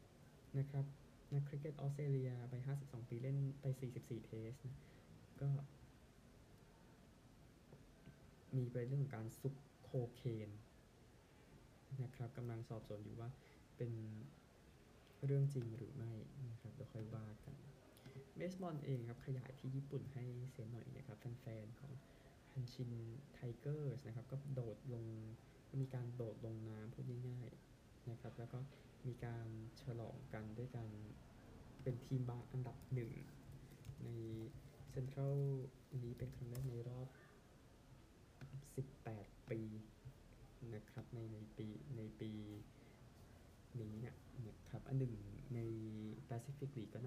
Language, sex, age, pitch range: Thai, male, 20-39, 115-135 Hz